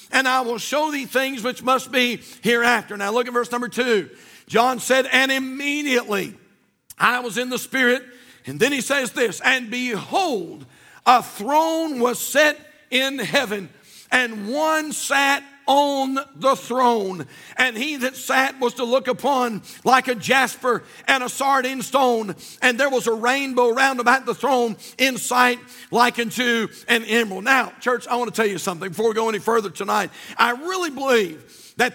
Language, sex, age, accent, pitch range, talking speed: English, male, 60-79, American, 235-270 Hz, 175 wpm